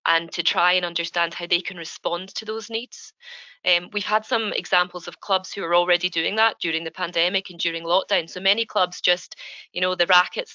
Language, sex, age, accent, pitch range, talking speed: English, female, 20-39, British, 170-195 Hz, 215 wpm